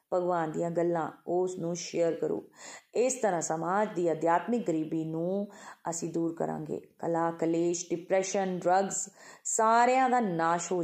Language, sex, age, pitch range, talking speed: Punjabi, female, 30-49, 165-210 Hz, 140 wpm